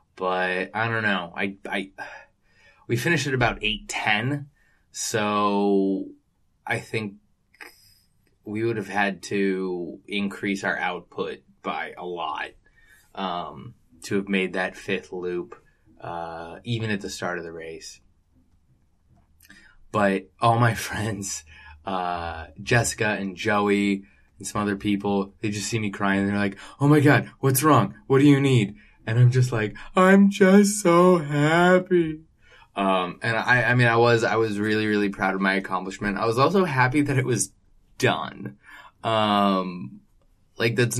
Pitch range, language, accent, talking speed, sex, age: 95-120 Hz, English, American, 150 wpm, male, 20-39